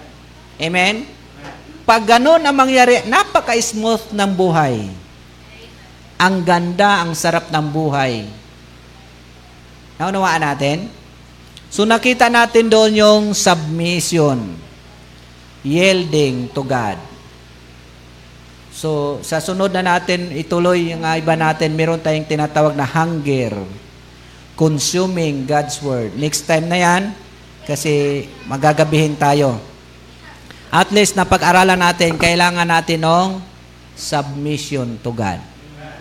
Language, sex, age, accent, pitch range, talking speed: Filipino, male, 50-69, native, 115-175 Hz, 100 wpm